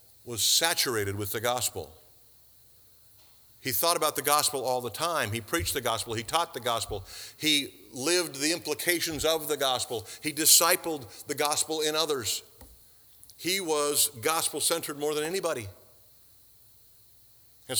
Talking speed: 140 wpm